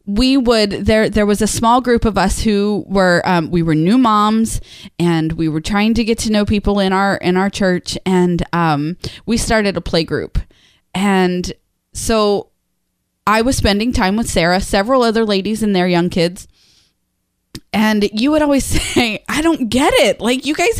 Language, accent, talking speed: English, American, 190 wpm